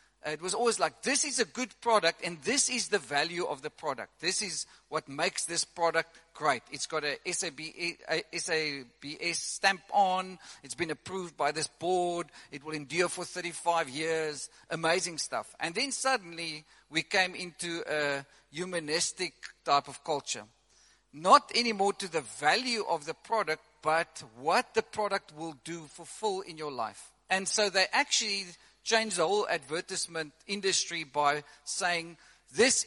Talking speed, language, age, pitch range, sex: 160 wpm, English, 50-69, 160-205 Hz, male